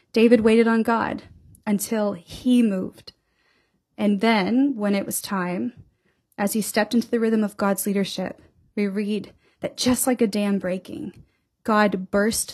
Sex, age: female, 30-49